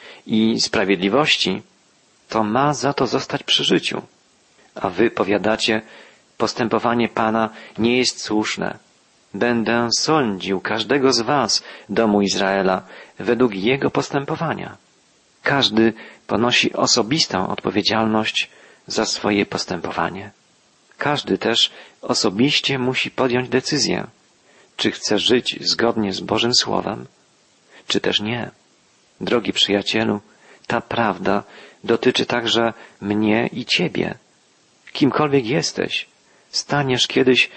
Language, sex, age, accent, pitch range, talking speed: Polish, male, 40-59, native, 105-130 Hz, 100 wpm